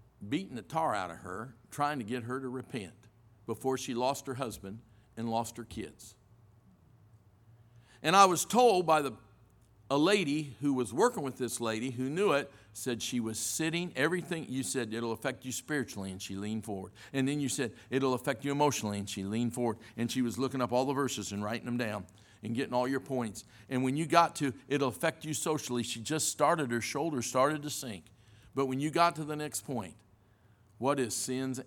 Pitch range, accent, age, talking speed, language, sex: 110-135 Hz, American, 50-69, 210 wpm, English, male